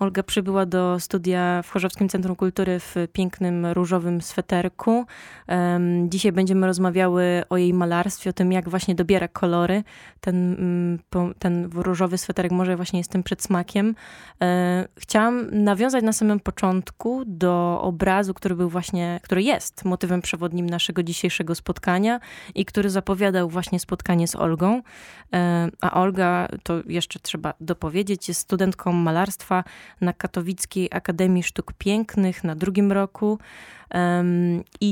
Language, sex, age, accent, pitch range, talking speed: Polish, female, 20-39, native, 180-195 Hz, 135 wpm